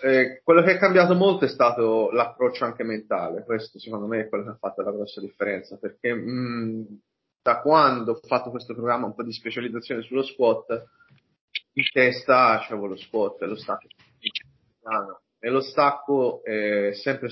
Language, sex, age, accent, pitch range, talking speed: Italian, male, 30-49, native, 110-130 Hz, 190 wpm